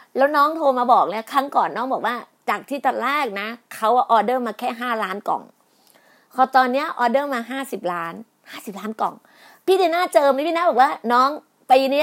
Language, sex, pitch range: Thai, female, 235-320 Hz